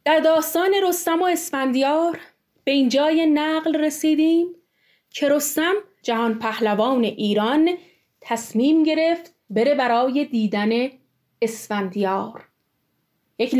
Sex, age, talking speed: female, 30-49, 95 wpm